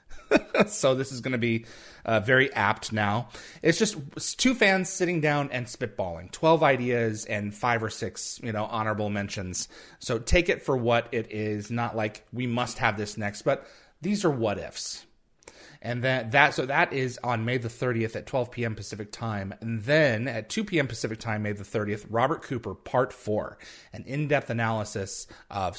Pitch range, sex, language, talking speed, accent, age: 100-125 Hz, male, English, 185 wpm, American, 30-49